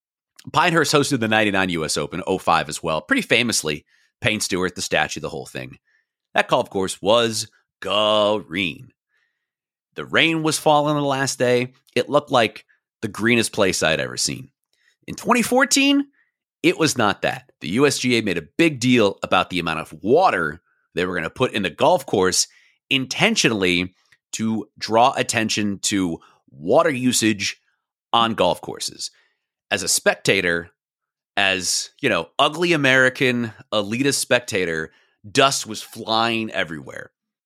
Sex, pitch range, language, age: male, 105-145 Hz, English, 30-49